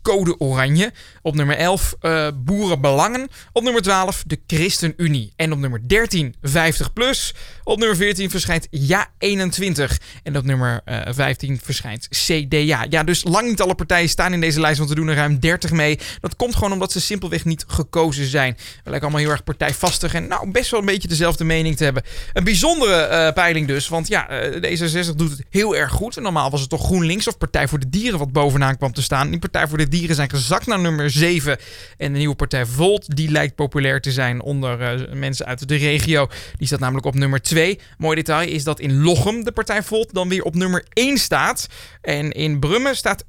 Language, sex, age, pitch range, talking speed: Dutch, male, 20-39, 140-190 Hz, 210 wpm